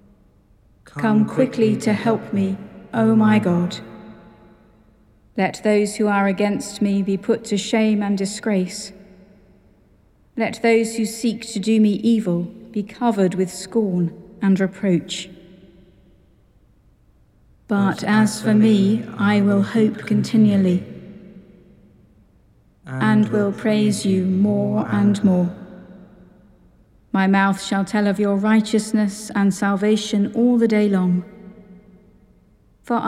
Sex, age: female, 50-69